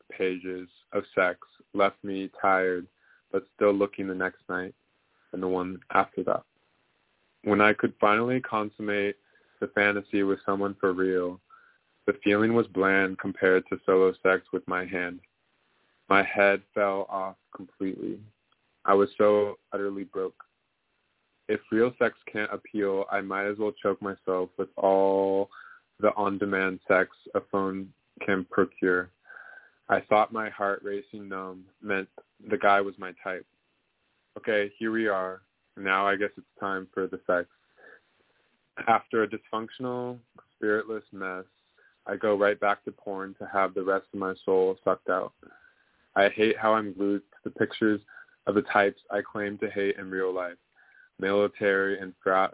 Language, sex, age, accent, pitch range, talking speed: English, male, 20-39, American, 95-105 Hz, 155 wpm